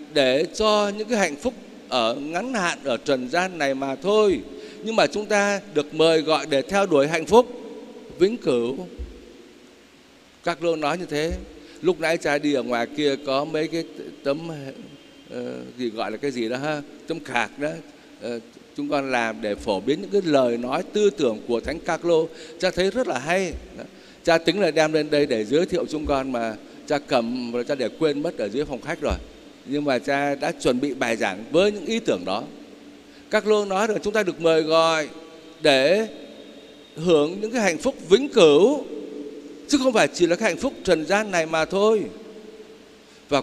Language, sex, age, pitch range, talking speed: Vietnamese, male, 60-79, 145-205 Hz, 205 wpm